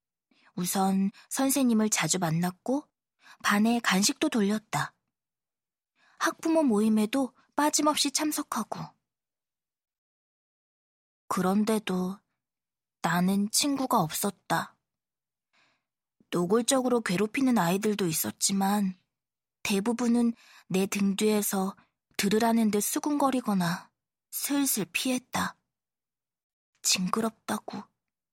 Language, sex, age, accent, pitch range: Korean, female, 20-39, native, 195-250 Hz